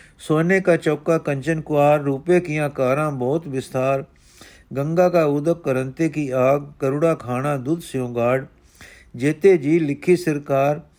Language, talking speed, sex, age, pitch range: Punjabi, 130 wpm, male, 50-69, 130-160 Hz